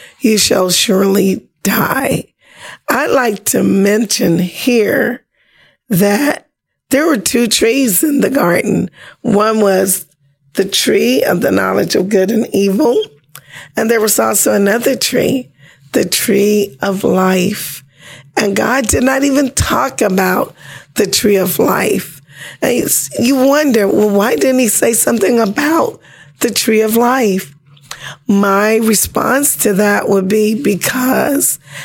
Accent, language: American, English